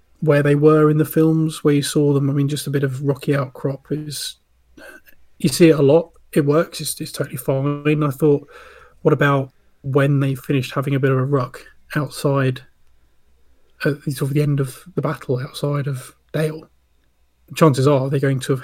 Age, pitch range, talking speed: 30-49, 135-150 Hz, 205 wpm